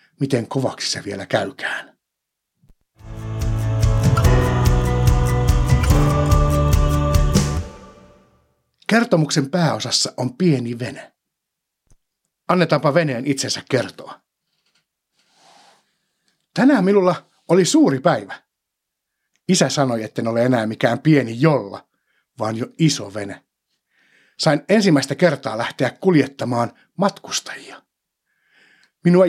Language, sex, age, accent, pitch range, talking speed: Finnish, male, 60-79, native, 115-175 Hz, 80 wpm